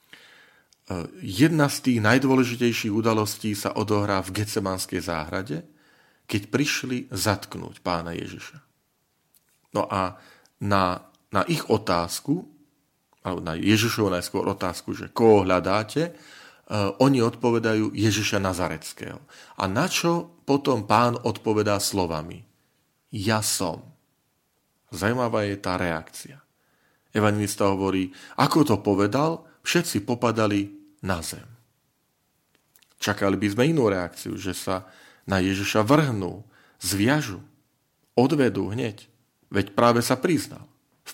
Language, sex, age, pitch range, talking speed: Slovak, male, 40-59, 100-130 Hz, 110 wpm